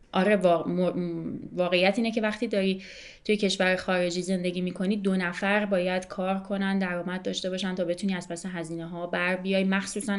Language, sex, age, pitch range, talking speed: Persian, female, 30-49, 170-195 Hz, 165 wpm